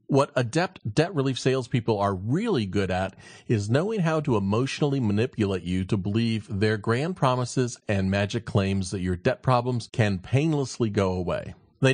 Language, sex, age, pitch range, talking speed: English, male, 40-59, 105-145 Hz, 165 wpm